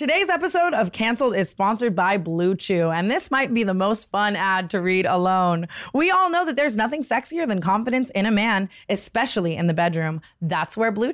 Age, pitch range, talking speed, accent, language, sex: 20-39, 185-265 Hz, 210 wpm, American, English, female